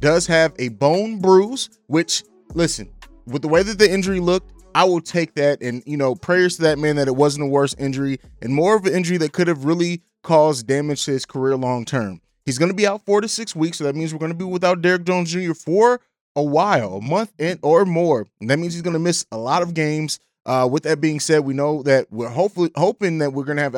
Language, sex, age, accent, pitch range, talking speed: English, male, 20-39, American, 140-175 Hz, 255 wpm